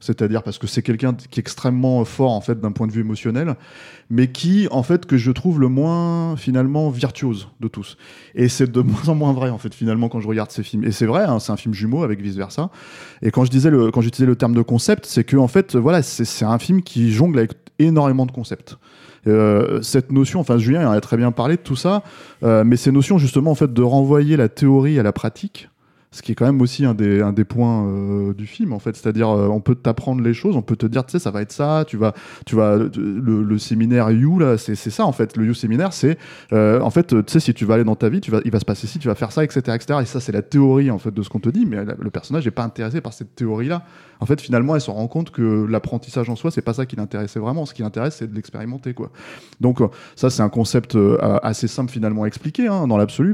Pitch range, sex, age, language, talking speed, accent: 110-140 Hz, male, 20-39, French, 275 wpm, French